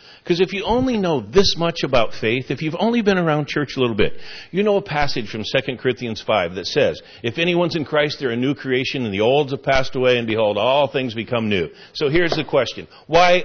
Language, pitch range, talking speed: English, 105-150 Hz, 235 wpm